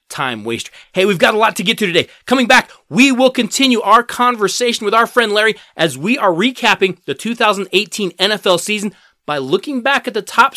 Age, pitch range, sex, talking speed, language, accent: 30-49, 185-240 Hz, male, 205 wpm, English, American